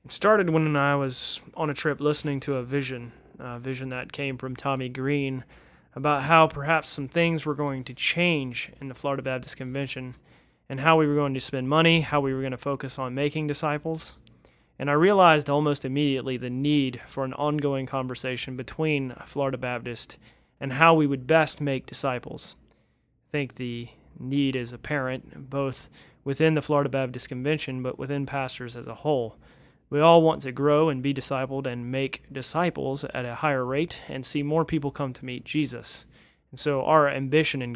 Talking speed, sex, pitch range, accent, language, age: 185 wpm, male, 130-150 Hz, American, English, 30-49